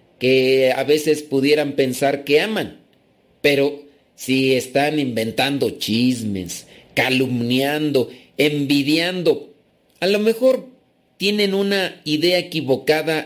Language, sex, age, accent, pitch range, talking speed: Spanish, male, 40-59, Mexican, 130-170 Hz, 95 wpm